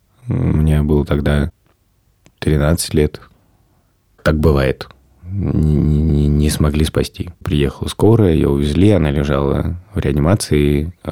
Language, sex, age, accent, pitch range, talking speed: Russian, male, 20-39, native, 75-90 Hz, 115 wpm